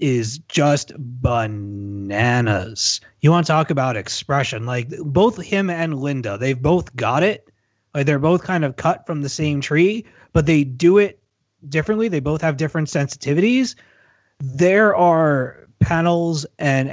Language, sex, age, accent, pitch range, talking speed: English, male, 30-49, American, 120-160 Hz, 150 wpm